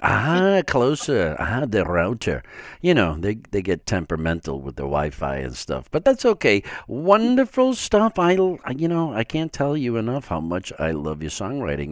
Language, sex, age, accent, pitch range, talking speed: English, male, 50-69, American, 80-120 Hz, 175 wpm